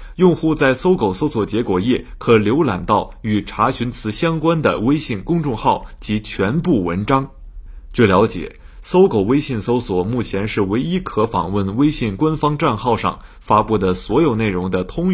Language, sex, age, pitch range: Chinese, male, 30-49, 100-150 Hz